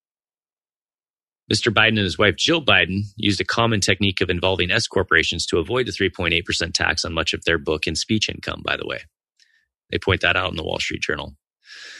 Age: 30-49